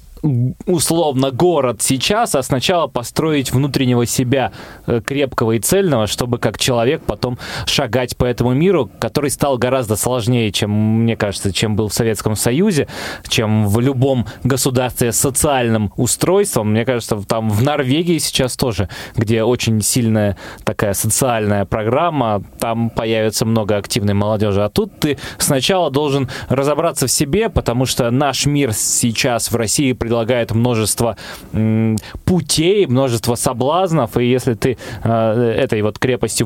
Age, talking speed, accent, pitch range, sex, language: 20-39, 135 wpm, native, 110-135 Hz, male, Russian